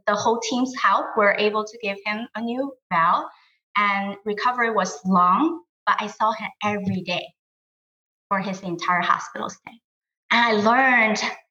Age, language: 20-39, English